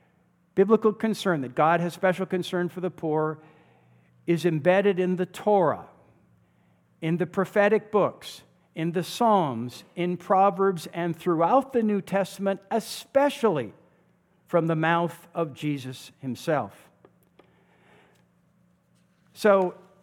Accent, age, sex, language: American, 50-69, male, English